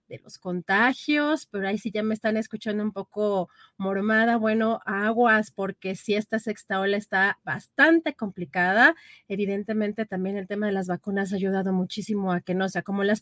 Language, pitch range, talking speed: Spanish, 195-245 Hz, 180 wpm